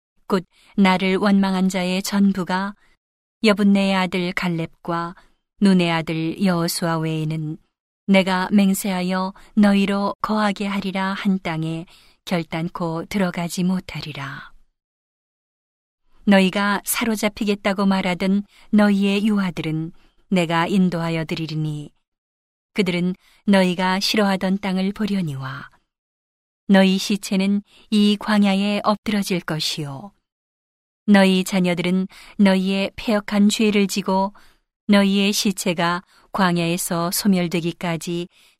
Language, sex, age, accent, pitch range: Korean, female, 40-59, native, 175-200 Hz